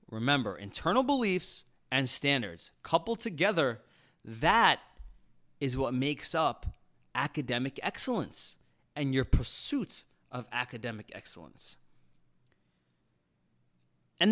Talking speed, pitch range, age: 90 wpm, 110-170 Hz, 30-49